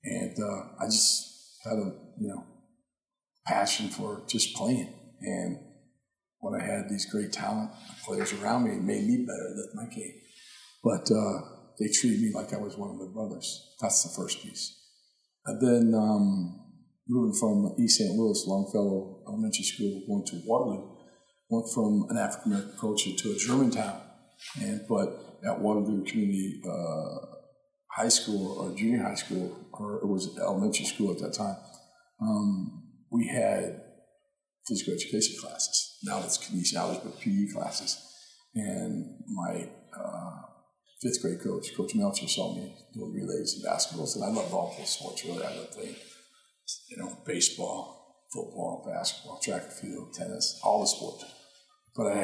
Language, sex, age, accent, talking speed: English, male, 50-69, American, 160 wpm